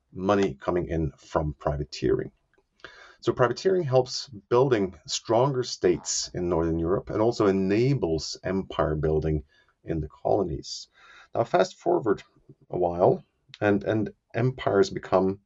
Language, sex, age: English, male, 30-49